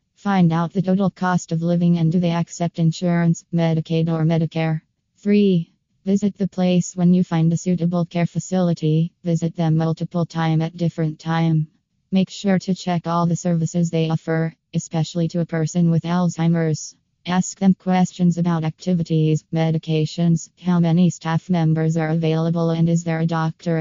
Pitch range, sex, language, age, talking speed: 160-180 Hz, female, English, 20-39, 165 wpm